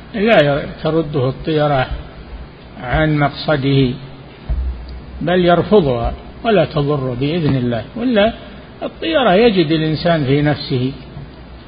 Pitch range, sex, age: 140-175 Hz, male, 50-69